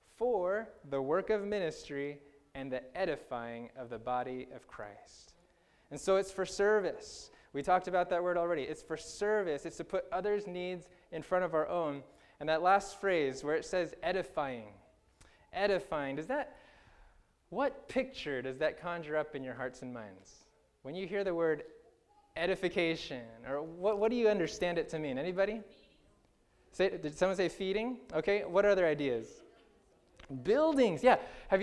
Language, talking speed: English, 165 wpm